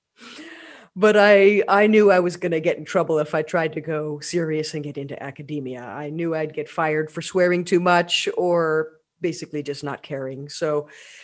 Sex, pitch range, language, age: female, 155-195 Hz, English, 40-59